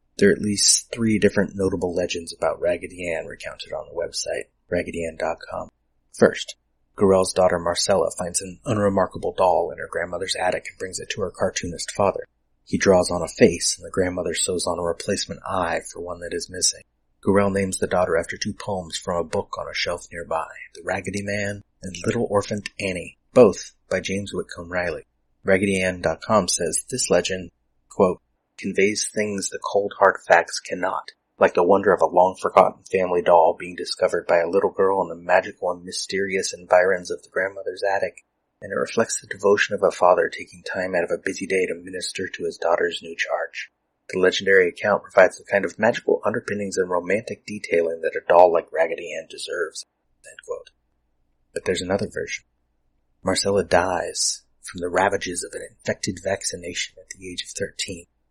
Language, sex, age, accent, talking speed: English, male, 30-49, American, 180 wpm